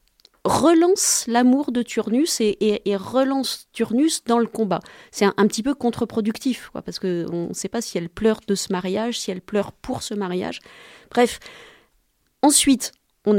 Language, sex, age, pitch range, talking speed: French, female, 30-49, 180-235 Hz, 175 wpm